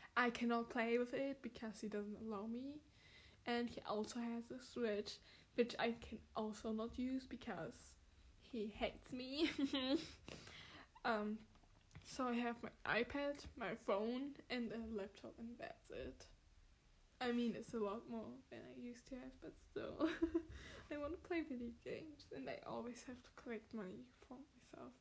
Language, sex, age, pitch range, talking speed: English, female, 10-29, 210-255 Hz, 165 wpm